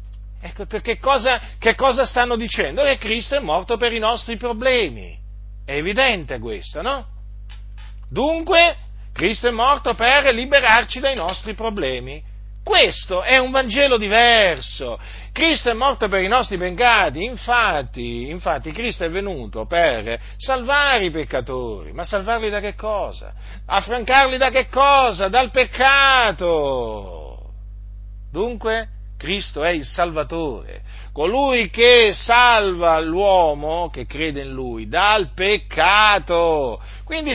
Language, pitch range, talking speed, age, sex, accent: Italian, 175-260 Hz, 120 wpm, 50-69, male, native